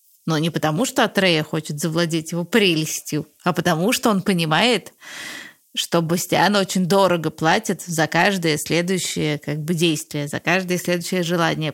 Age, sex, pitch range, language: 20-39, female, 155-195 Hz, Russian